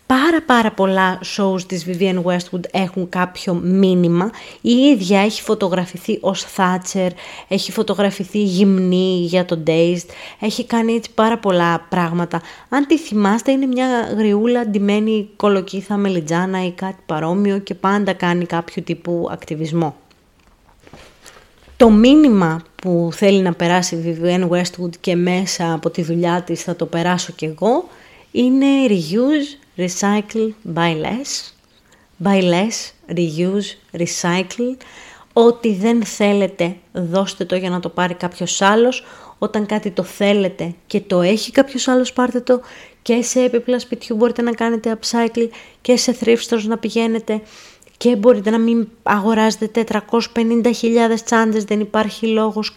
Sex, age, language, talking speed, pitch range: female, 20-39, Greek, 135 wpm, 180-230 Hz